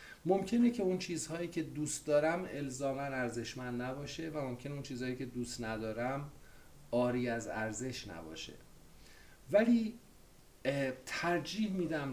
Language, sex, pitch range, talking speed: Persian, male, 120-160 Hz, 120 wpm